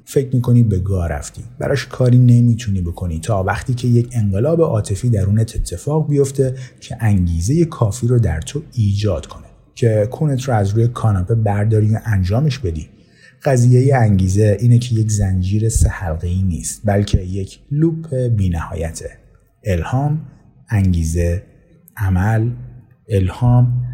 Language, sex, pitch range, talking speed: Persian, male, 95-125 Hz, 130 wpm